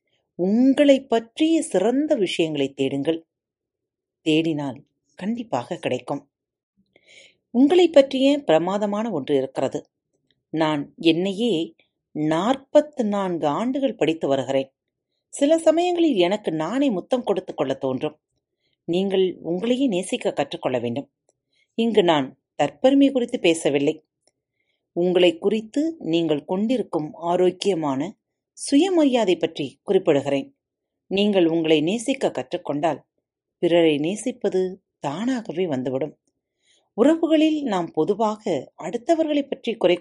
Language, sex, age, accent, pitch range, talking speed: Tamil, female, 40-59, native, 160-250 Hz, 90 wpm